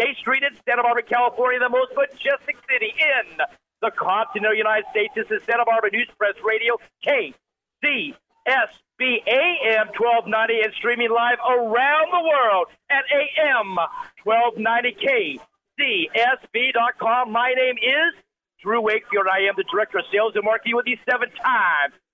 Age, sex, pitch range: 50-69, male, 220-275 Hz